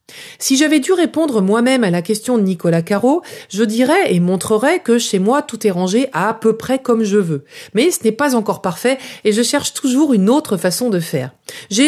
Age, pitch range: 40-59, 185-255 Hz